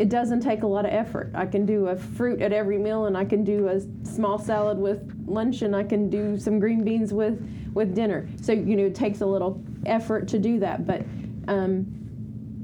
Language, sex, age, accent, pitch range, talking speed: English, female, 30-49, American, 180-210 Hz, 225 wpm